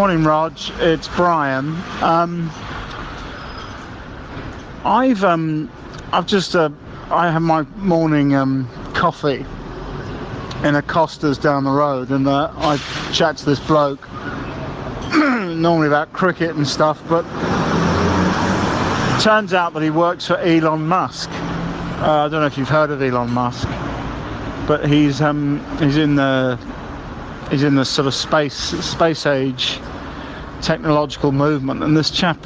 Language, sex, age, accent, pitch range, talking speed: English, male, 50-69, British, 140-165 Hz, 135 wpm